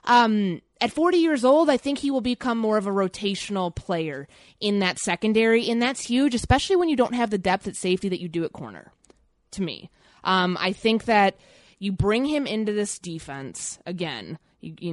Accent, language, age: American, English, 20-39